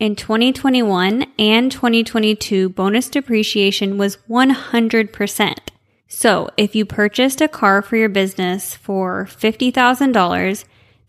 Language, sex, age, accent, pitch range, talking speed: English, female, 10-29, American, 195-240 Hz, 105 wpm